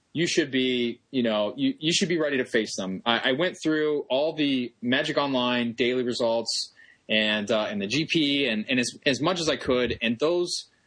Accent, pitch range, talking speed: American, 115-145 Hz, 210 wpm